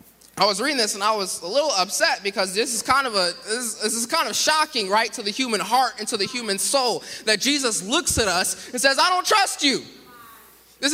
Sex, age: male, 20-39